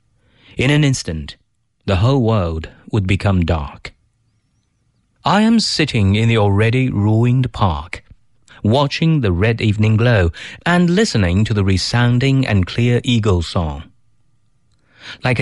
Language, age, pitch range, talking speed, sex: English, 30-49, 105-135 Hz, 125 wpm, male